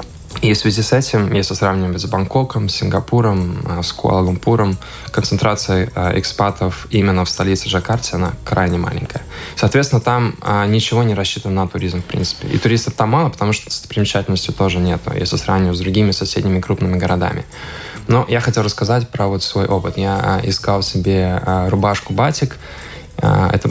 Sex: male